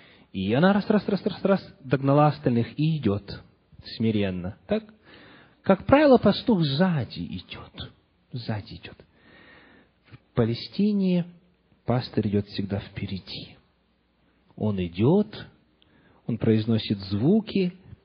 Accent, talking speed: native, 90 wpm